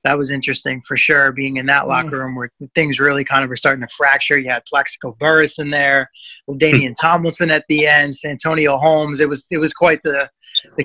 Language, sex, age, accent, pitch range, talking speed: English, male, 30-49, American, 135-155 Hz, 215 wpm